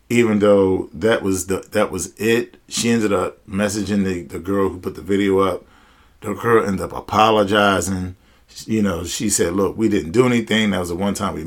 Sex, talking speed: male, 215 wpm